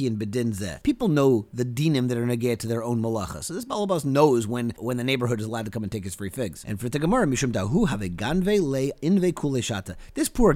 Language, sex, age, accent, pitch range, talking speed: English, male, 30-49, American, 120-160 Hz, 250 wpm